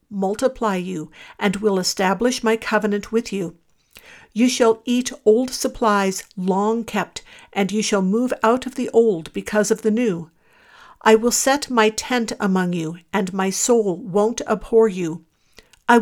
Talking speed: 155 wpm